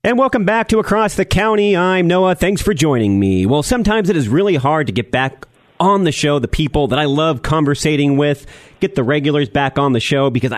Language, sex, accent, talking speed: English, male, American, 225 wpm